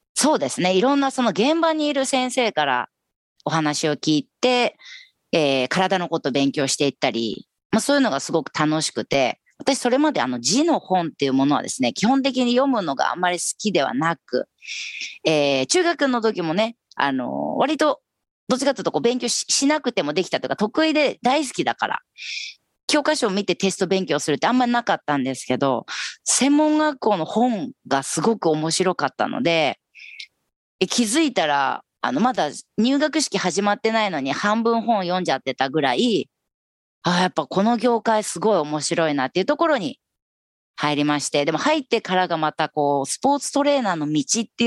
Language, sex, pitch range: Japanese, female, 150-250 Hz